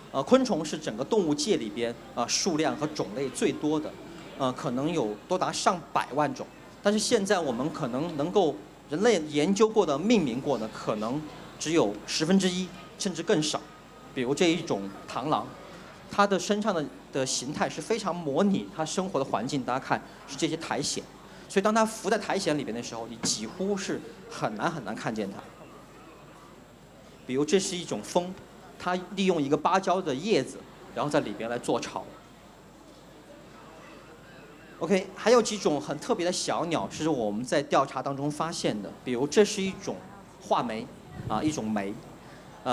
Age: 40-59